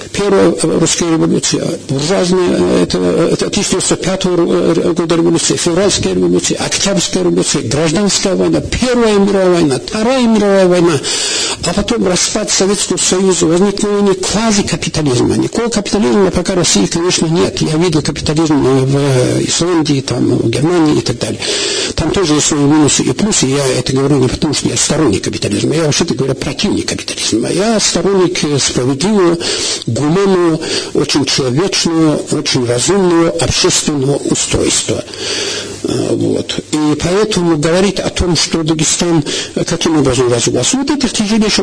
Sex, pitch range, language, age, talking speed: male, 150-195 Hz, Russian, 60-79, 125 wpm